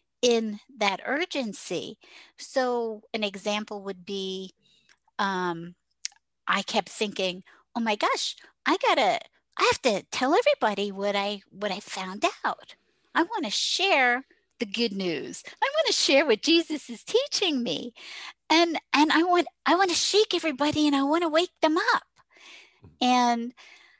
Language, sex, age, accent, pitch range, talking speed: English, female, 50-69, American, 210-305 Hz, 155 wpm